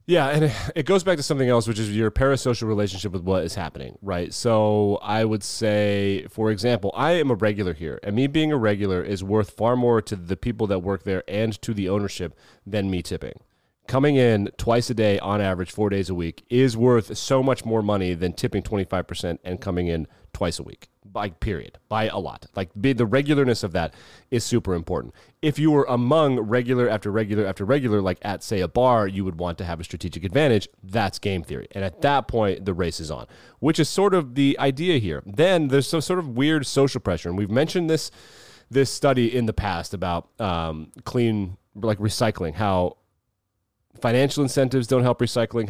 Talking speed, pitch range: 210 wpm, 95-125 Hz